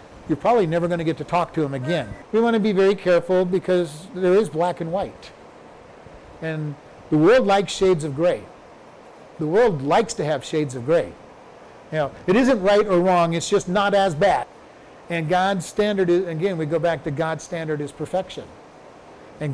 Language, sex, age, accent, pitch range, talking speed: English, male, 50-69, American, 160-205 Hz, 195 wpm